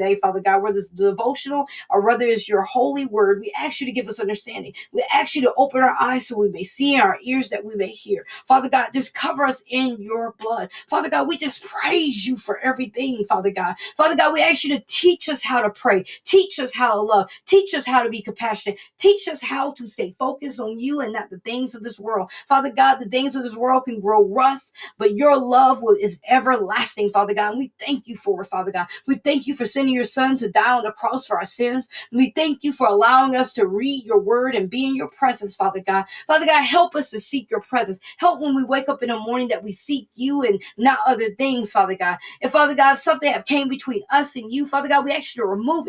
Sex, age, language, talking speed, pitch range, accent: female, 40-59, English, 250 wpm, 215-285 Hz, American